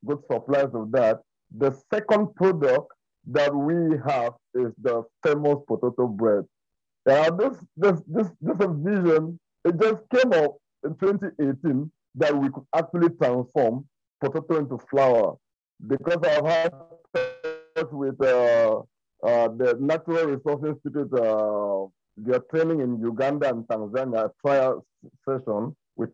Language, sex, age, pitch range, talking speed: English, male, 50-69, 130-175 Hz, 125 wpm